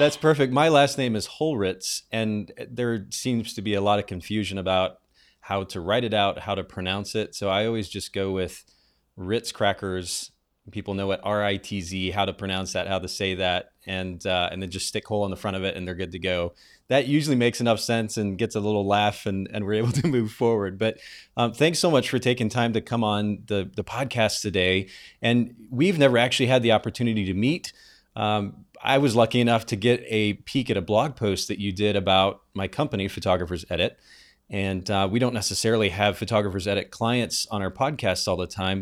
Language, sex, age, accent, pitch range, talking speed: English, male, 30-49, American, 95-115 Hz, 215 wpm